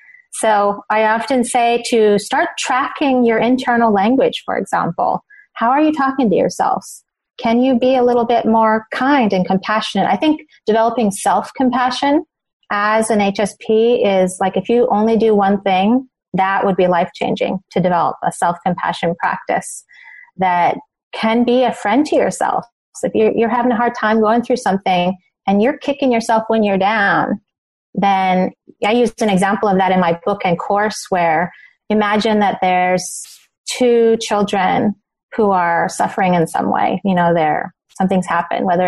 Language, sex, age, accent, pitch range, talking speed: English, female, 30-49, American, 185-235 Hz, 165 wpm